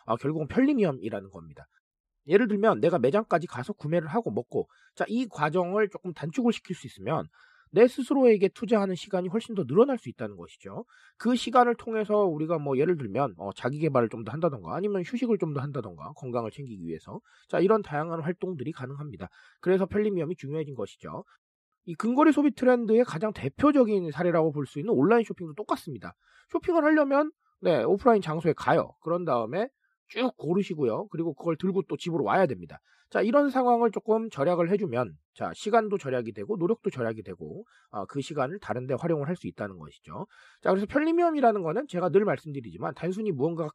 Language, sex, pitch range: Korean, male, 145-230 Hz